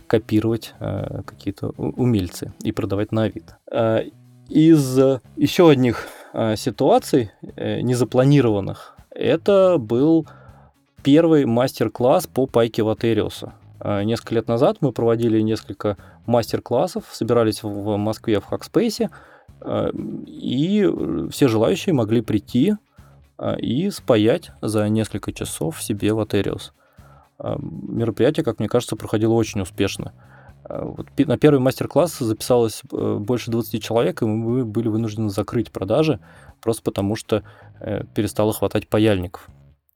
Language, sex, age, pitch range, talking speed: Russian, male, 20-39, 105-125 Hz, 105 wpm